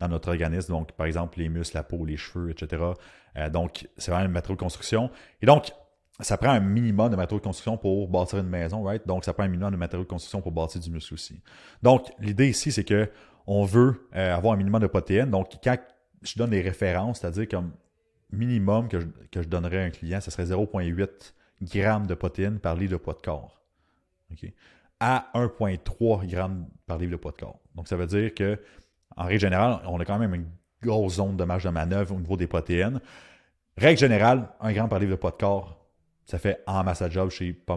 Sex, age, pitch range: male, 30-49, 85-105 Hz